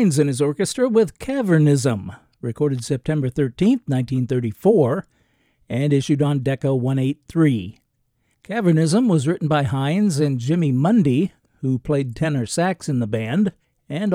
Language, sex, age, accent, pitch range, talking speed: English, male, 50-69, American, 130-165 Hz, 130 wpm